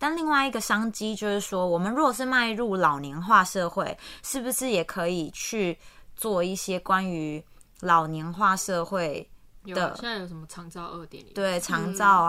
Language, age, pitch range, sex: Chinese, 20-39, 175-215 Hz, female